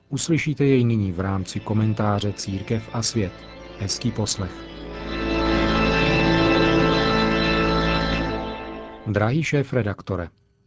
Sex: male